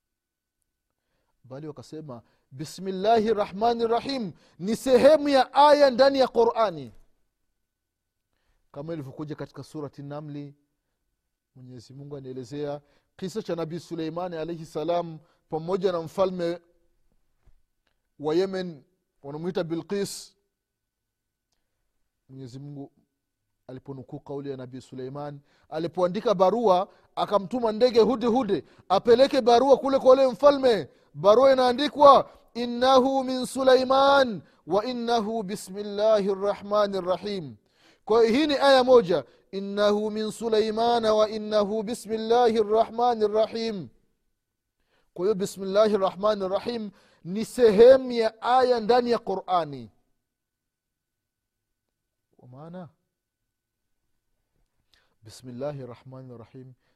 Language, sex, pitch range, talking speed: Swahili, male, 140-230 Hz, 60 wpm